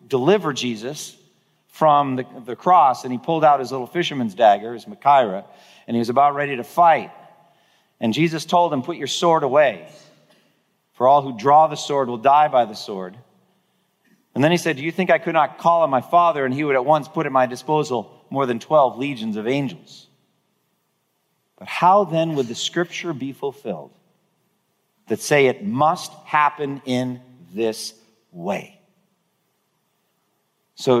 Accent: American